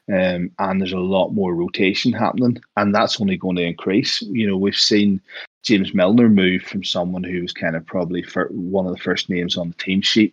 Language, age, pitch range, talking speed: English, 20-39, 90-110 Hz, 215 wpm